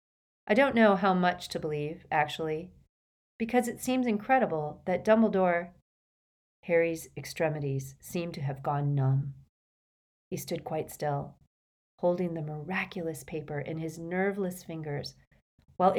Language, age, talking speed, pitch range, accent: English, 40-59, 130 wpm, 150-215 Hz, American